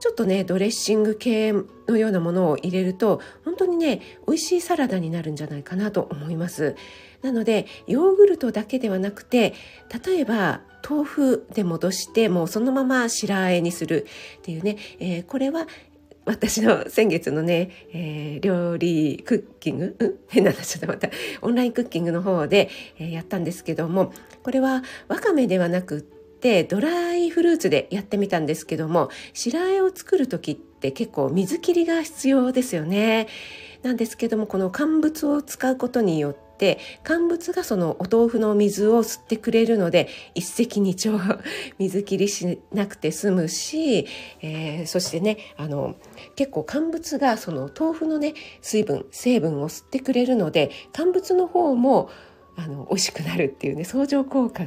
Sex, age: female, 40-59